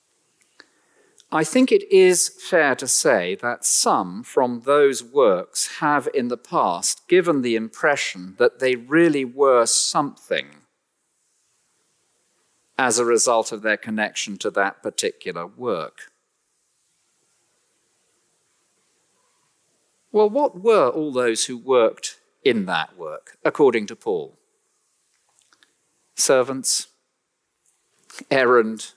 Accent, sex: British, male